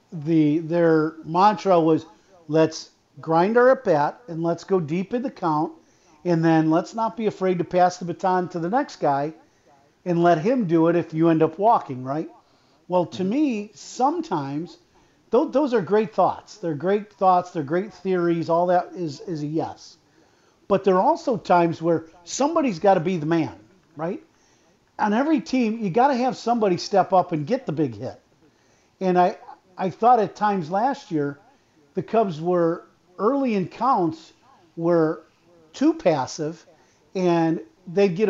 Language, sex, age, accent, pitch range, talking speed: English, male, 50-69, American, 165-205 Hz, 170 wpm